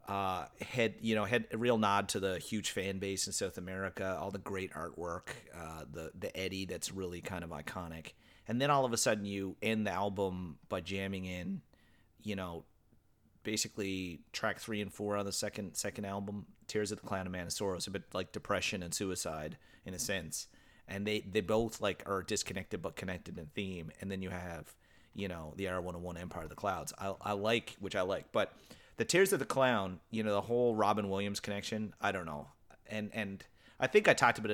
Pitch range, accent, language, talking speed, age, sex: 90-105 Hz, American, English, 210 wpm, 30-49, male